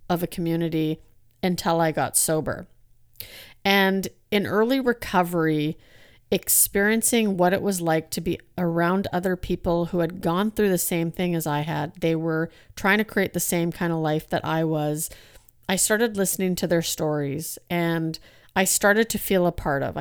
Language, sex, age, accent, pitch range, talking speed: English, female, 40-59, American, 160-190 Hz, 175 wpm